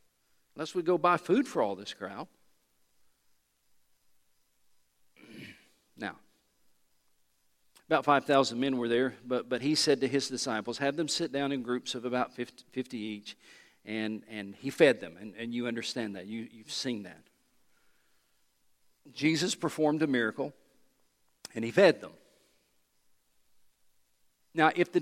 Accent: American